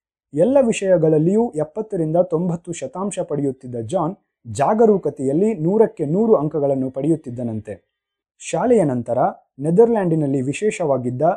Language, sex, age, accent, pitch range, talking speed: Kannada, male, 30-49, native, 140-200 Hz, 85 wpm